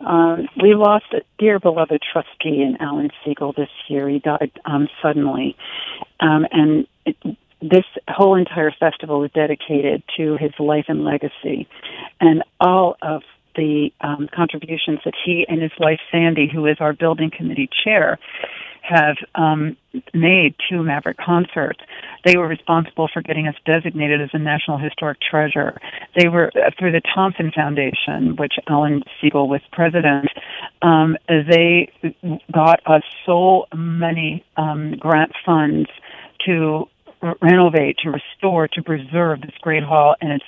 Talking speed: 145 wpm